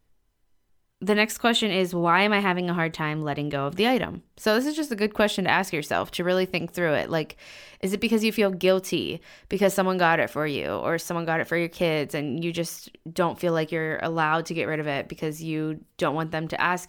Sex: female